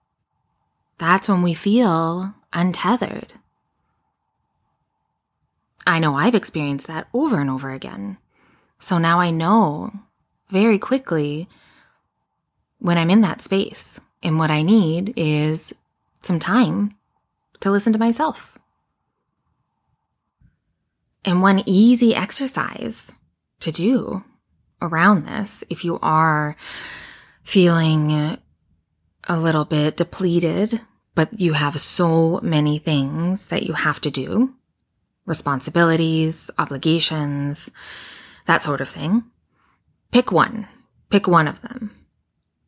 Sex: female